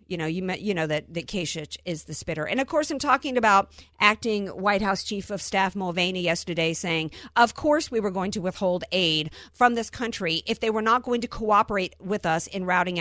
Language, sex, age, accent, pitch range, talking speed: English, female, 50-69, American, 180-285 Hz, 225 wpm